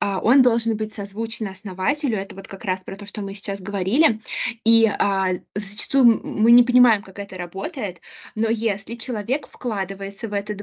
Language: Russian